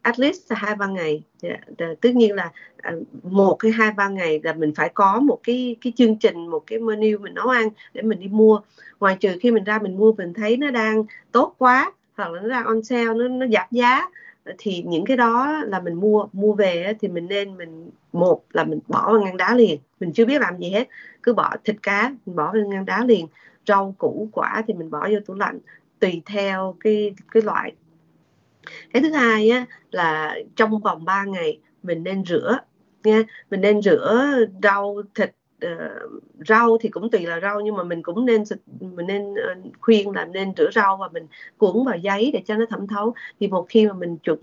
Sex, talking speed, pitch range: female, 215 wpm, 185-230 Hz